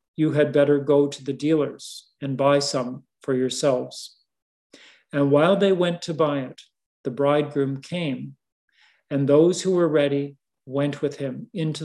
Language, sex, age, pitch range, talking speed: English, male, 40-59, 140-155 Hz, 155 wpm